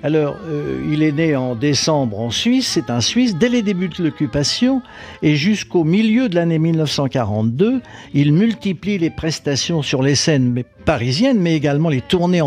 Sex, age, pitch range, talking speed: male, 60-79, 140-195 Hz, 170 wpm